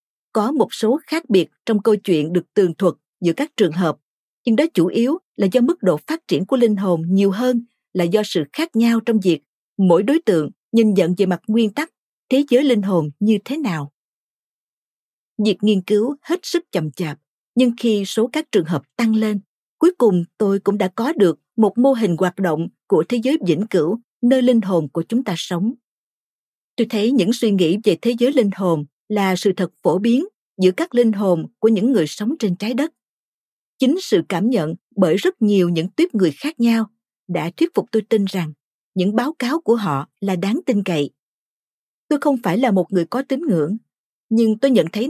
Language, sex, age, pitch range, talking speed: Vietnamese, female, 50-69, 185-245 Hz, 210 wpm